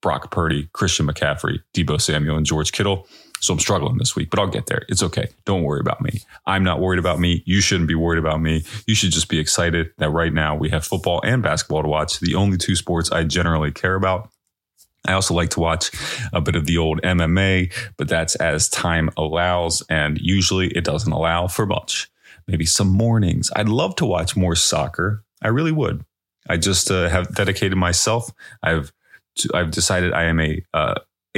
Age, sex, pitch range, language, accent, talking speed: 30-49, male, 85-100 Hz, English, American, 205 wpm